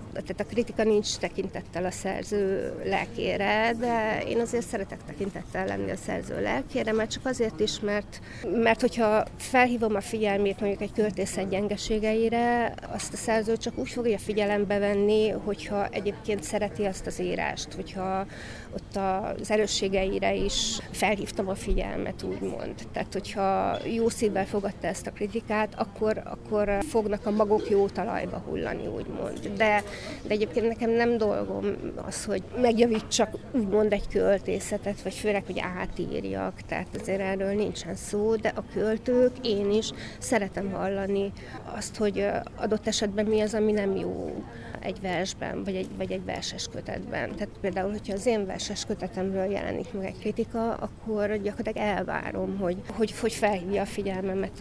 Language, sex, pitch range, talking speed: Hungarian, female, 195-225 Hz, 150 wpm